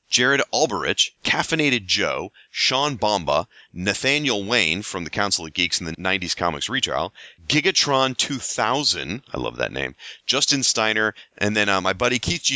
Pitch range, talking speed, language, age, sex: 95-135 Hz, 155 wpm, English, 30-49, male